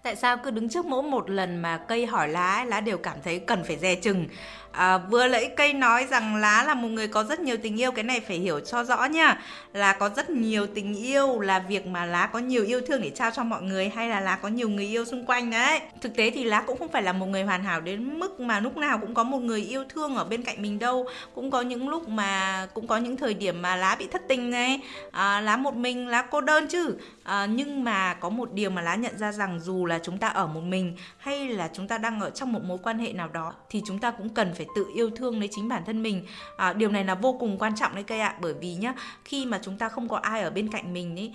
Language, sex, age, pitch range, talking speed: Vietnamese, female, 20-39, 195-250 Hz, 275 wpm